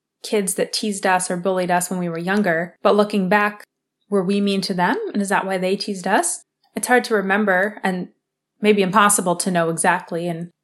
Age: 20-39